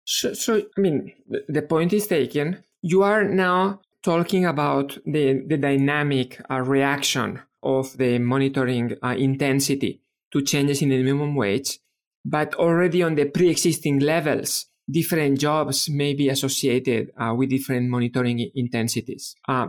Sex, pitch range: male, 135-170 Hz